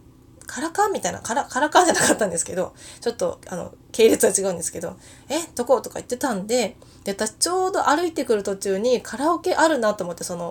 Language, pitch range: Japanese, 210-300 Hz